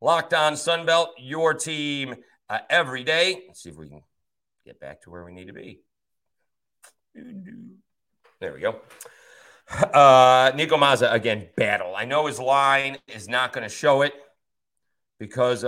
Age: 40-59